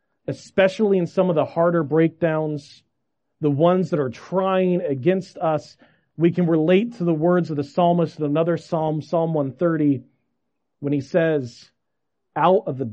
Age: 40-59